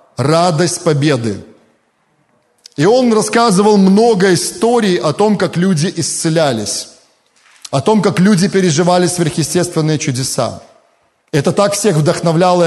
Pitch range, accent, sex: 160-210 Hz, native, male